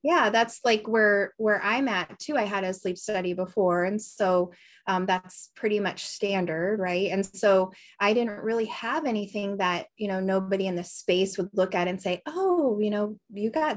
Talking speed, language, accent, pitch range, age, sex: 200 wpm, English, American, 185-230 Hz, 20-39, female